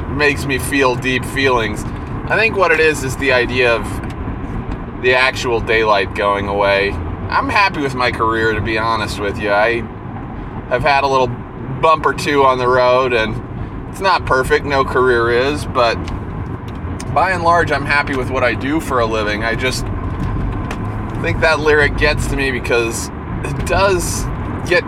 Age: 20-39